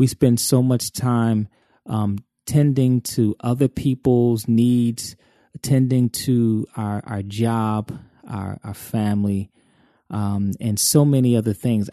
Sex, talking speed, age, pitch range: male, 125 wpm, 30-49, 105-125 Hz